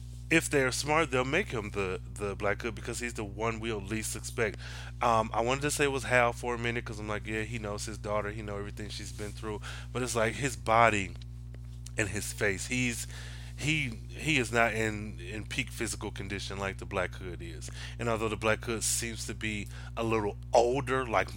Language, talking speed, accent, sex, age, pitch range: English, 215 wpm, American, male, 20-39, 100-120 Hz